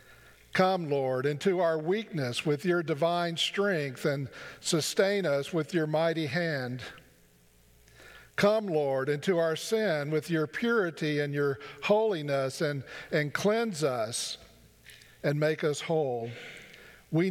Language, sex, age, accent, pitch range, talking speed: English, male, 50-69, American, 140-185 Hz, 125 wpm